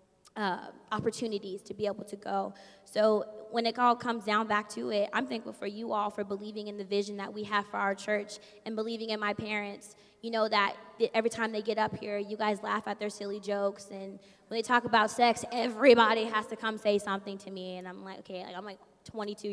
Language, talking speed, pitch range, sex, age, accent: English, 230 wpm, 200-235 Hz, female, 20-39, American